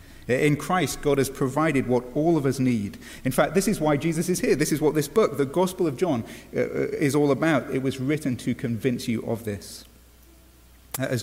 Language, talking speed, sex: English, 210 wpm, male